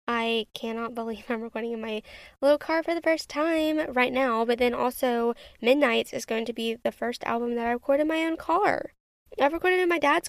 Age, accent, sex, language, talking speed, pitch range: 10-29, American, female, English, 220 wpm, 225-285 Hz